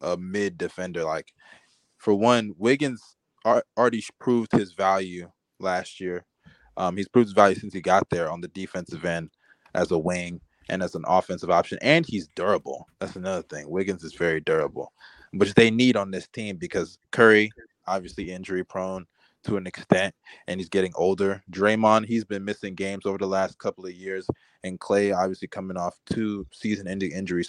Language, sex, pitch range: English, male, 90-110 Hz